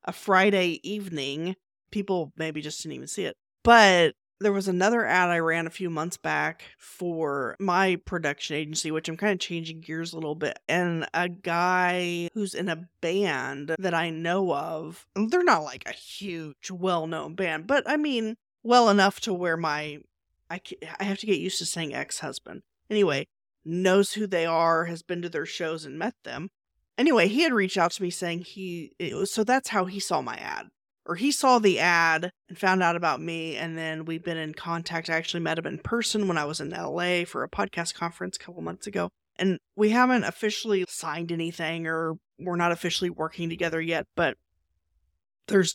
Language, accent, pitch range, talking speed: English, American, 160-195 Hz, 195 wpm